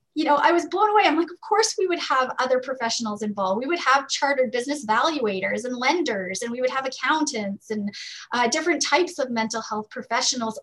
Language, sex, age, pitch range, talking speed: English, female, 20-39, 225-280 Hz, 210 wpm